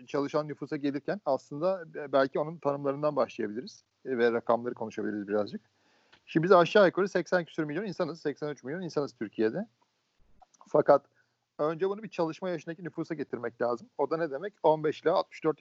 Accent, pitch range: native, 135-180 Hz